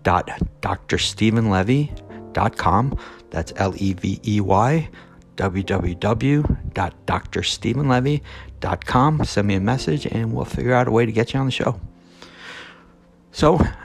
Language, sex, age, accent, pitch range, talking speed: English, male, 60-79, American, 85-110 Hz, 110 wpm